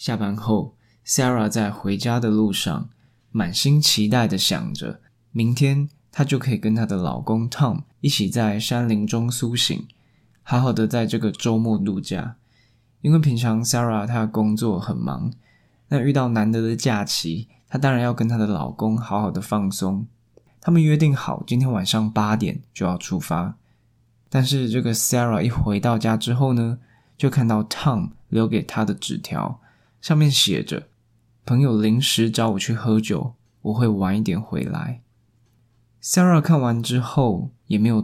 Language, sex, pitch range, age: Chinese, male, 110-130 Hz, 20-39